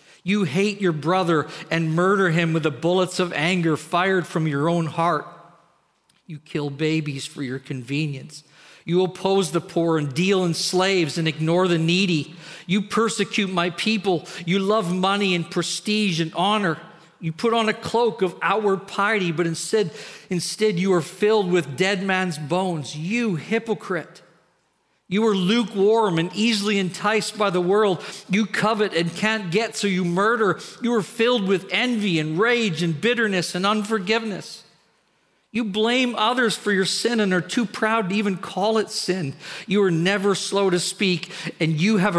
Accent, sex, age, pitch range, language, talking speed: American, male, 50-69, 170-210 Hz, English, 170 wpm